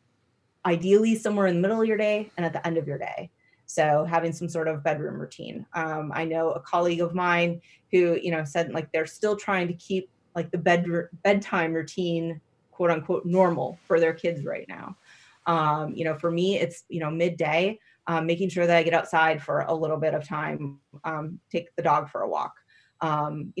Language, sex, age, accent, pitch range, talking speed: English, female, 30-49, American, 160-190 Hz, 210 wpm